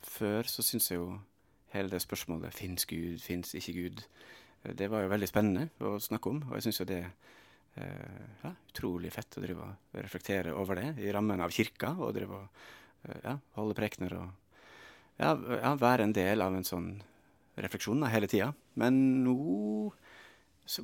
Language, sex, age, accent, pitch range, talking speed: English, male, 30-49, Norwegian, 95-120 Hz, 175 wpm